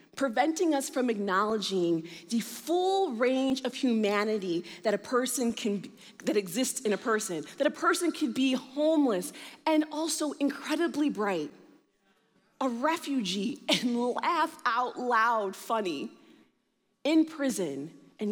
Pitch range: 180-275 Hz